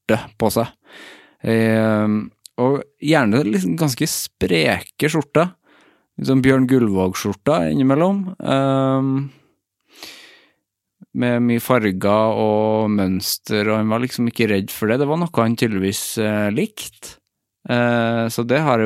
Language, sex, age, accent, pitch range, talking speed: English, male, 20-39, Norwegian, 100-115 Hz, 125 wpm